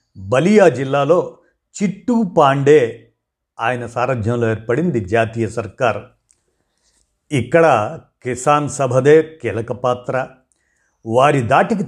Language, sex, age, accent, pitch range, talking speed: Telugu, male, 50-69, native, 120-165 Hz, 75 wpm